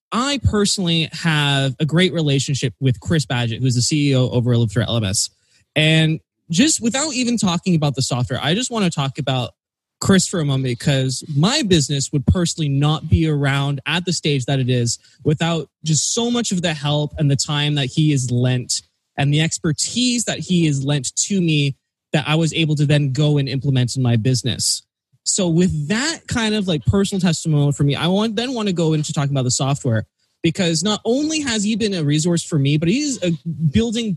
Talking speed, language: 205 wpm, English